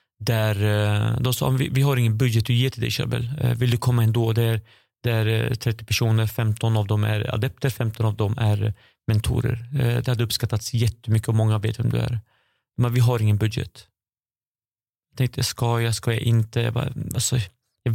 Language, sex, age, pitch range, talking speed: Swedish, male, 30-49, 115-130 Hz, 185 wpm